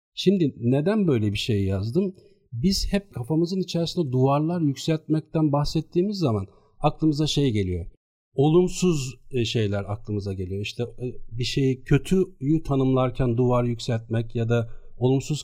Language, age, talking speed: Turkish, 50-69, 120 wpm